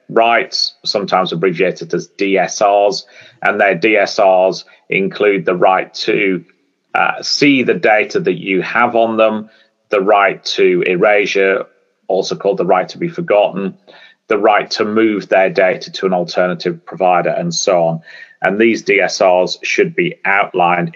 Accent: British